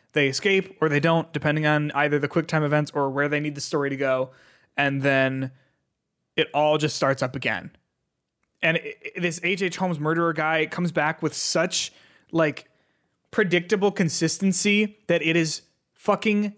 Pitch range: 150-205 Hz